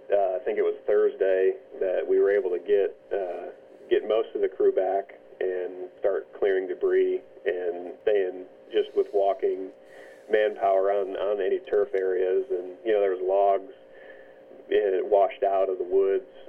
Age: 40-59